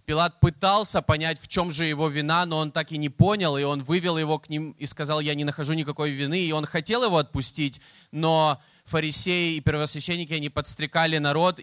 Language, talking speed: Russian, 200 wpm